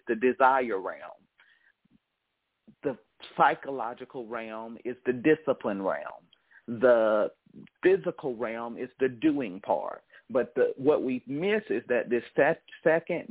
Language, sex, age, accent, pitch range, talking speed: English, male, 50-69, American, 120-155 Hz, 115 wpm